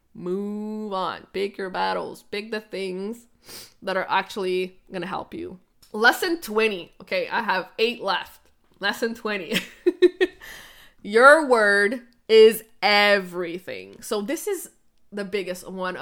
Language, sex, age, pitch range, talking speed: English, female, 20-39, 190-245 Hz, 125 wpm